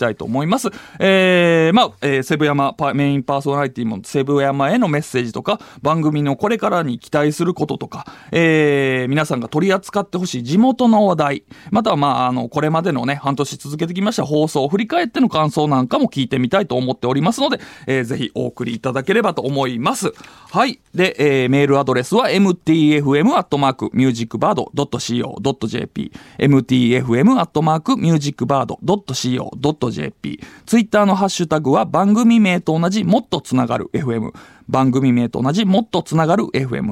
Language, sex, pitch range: Japanese, male, 135-200 Hz